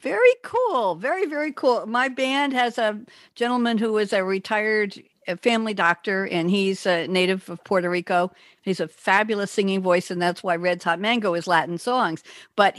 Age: 60-79